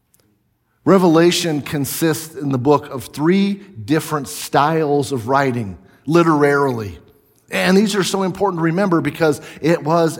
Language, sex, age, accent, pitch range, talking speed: English, male, 40-59, American, 130-160 Hz, 130 wpm